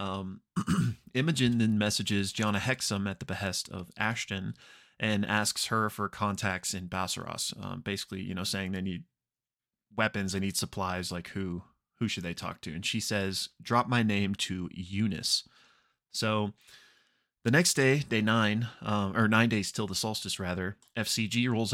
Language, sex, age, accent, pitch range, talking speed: English, male, 20-39, American, 95-115 Hz, 165 wpm